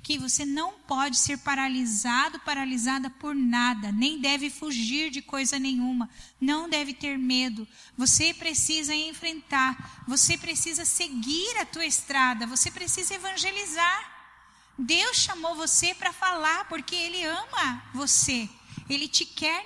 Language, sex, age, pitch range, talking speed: Portuguese, female, 10-29, 245-315 Hz, 130 wpm